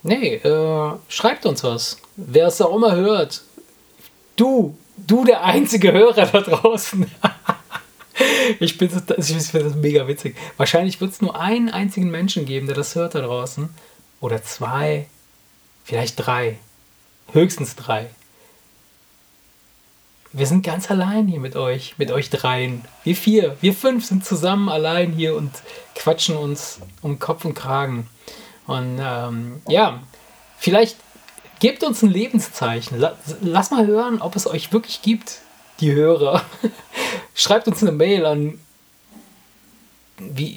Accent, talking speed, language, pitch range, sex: German, 135 wpm, German, 135-200 Hz, male